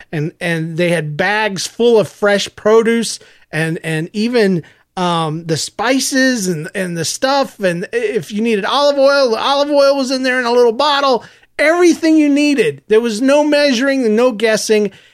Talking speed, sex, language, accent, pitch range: 175 wpm, male, English, American, 170-230 Hz